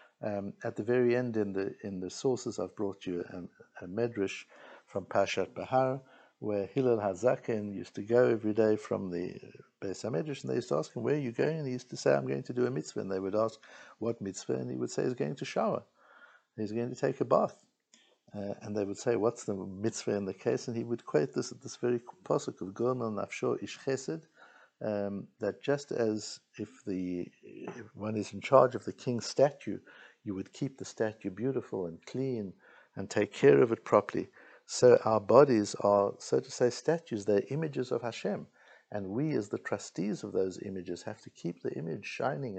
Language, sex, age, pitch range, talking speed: English, male, 60-79, 100-125 Hz, 215 wpm